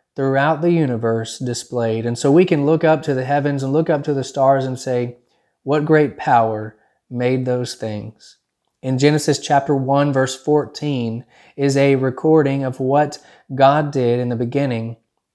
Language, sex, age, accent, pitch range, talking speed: English, male, 30-49, American, 120-145 Hz, 170 wpm